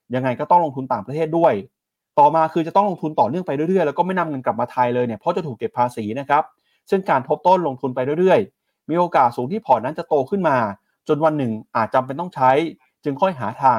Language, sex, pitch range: Thai, male, 130-175 Hz